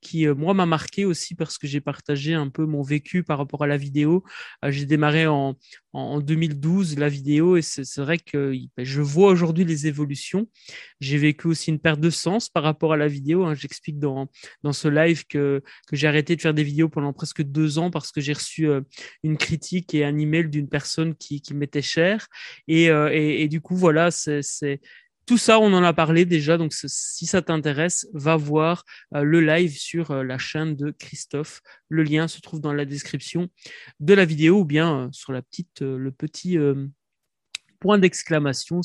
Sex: male